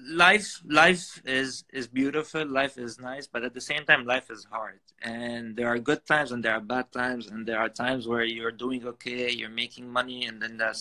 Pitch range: 120-135 Hz